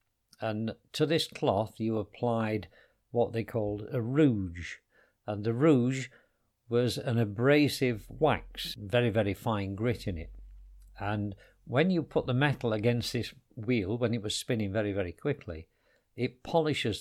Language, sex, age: English, male, 50-69